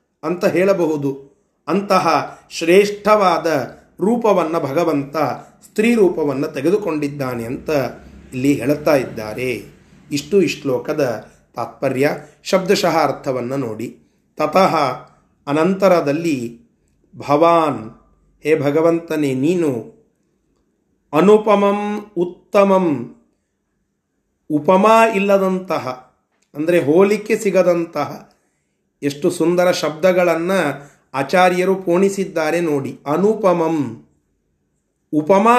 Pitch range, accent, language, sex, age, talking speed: 140-195 Hz, native, Kannada, male, 30-49, 70 wpm